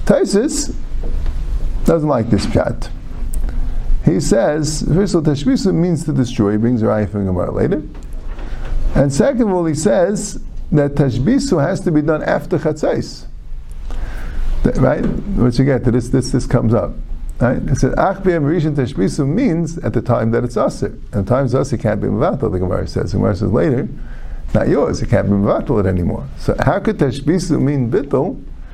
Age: 50-69